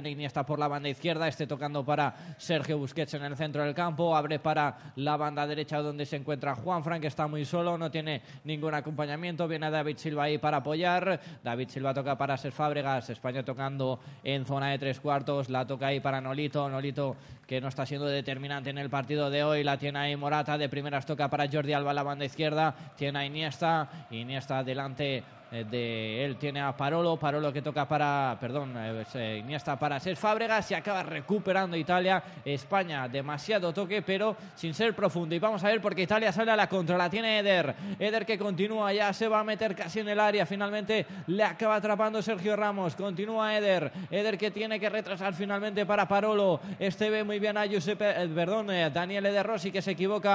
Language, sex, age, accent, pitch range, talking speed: Spanish, male, 20-39, Spanish, 145-200 Hz, 200 wpm